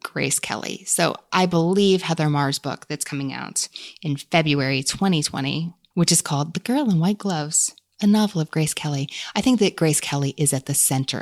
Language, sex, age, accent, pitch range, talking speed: English, female, 20-39, American, 140-185 Hz, 195 wpm